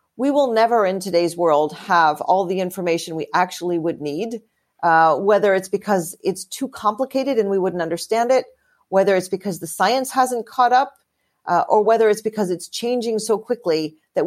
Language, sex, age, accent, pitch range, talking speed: English, female, 40-59, American, 185-240 Hz, 185 wpm